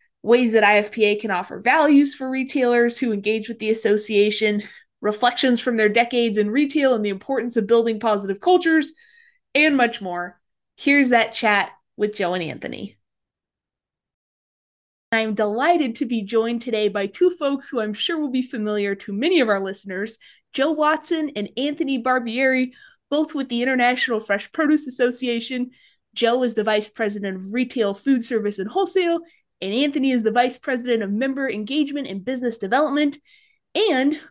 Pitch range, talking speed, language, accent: 215-280 Hz, 160 wpm, English, American